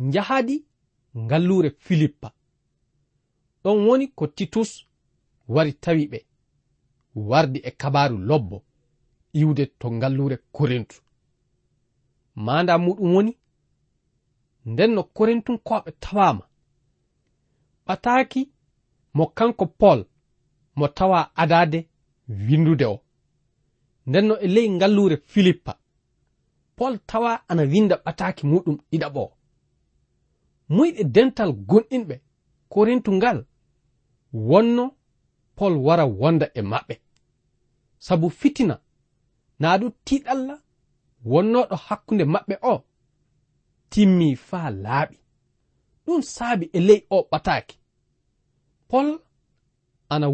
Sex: male